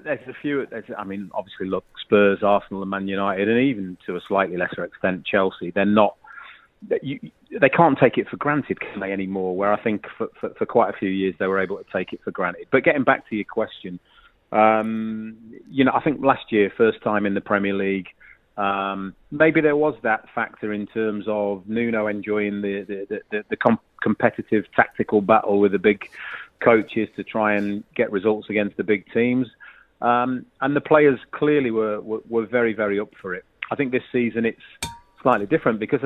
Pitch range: 100-115 Hz